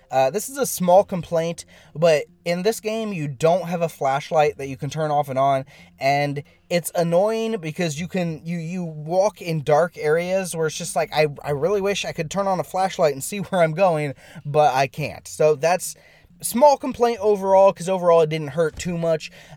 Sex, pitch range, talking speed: male, 145-185 Hz, 210 wpm